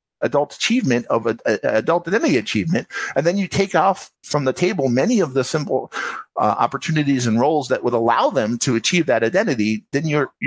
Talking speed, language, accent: 195 wpm, English, American